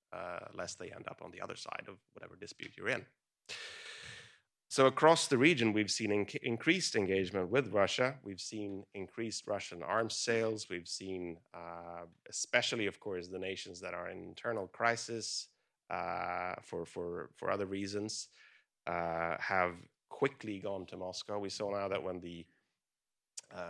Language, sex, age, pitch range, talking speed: English, male, 30-49, 90-110 Hz, 160 wpm